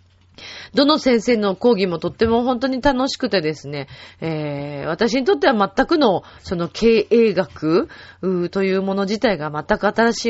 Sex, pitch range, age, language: female, 160-240 Hz, 30-49, Japanese